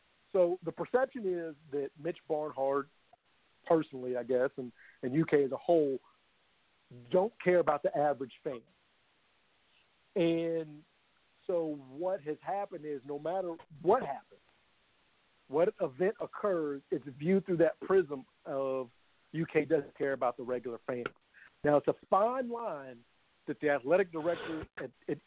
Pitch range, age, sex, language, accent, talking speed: 140-175 Hz, 50-69, male, English, American, 140 wpm